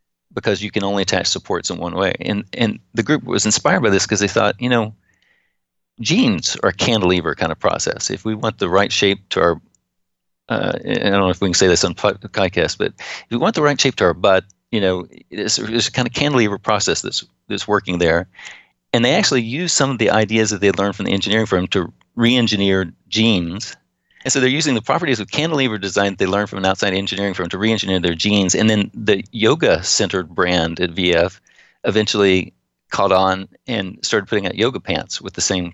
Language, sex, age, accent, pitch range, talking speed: English, male, 40-59, American, 90-115 Hz, 215 wpm